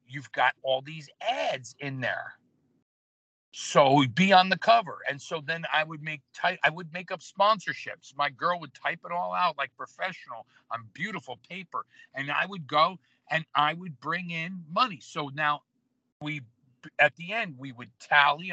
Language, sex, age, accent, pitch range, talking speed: English, male, 50-69, American, 140-180 Hz, 180 wpm